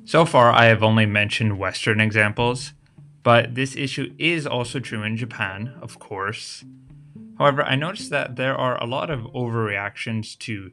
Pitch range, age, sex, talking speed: 110-130 Hz, 20-39, male, 160 wpm